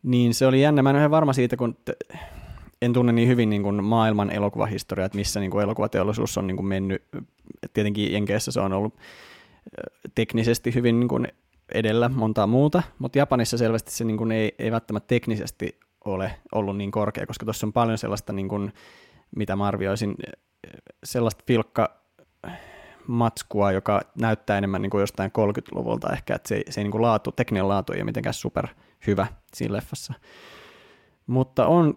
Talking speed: 165 wpm